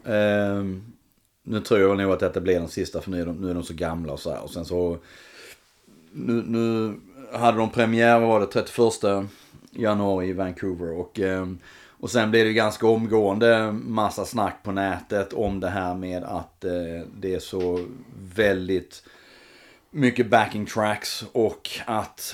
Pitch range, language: 90-110 Hz, Swedish